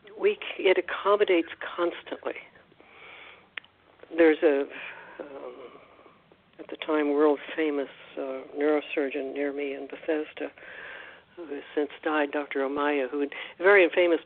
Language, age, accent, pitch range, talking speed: English, 60-79, American, 145-180 Hz, 110 wpm